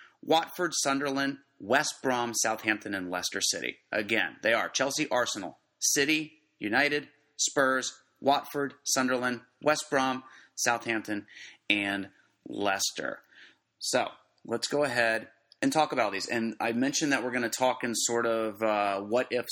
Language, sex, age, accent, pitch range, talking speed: English, male, 30-49, American, 110-135 Hz, 135 wpm